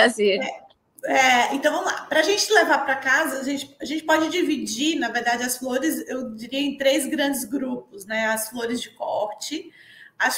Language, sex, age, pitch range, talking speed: Portuguese, female, 20-39, 240-290 Hz, 175 wpm